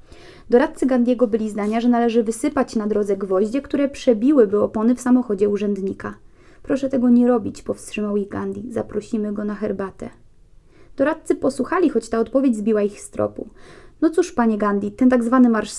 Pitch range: 210-260 Hz